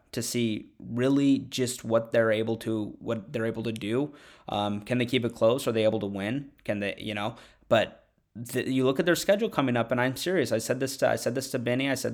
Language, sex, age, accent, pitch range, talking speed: English, male, 20-39, American, 110-140 Hz, 250 wpm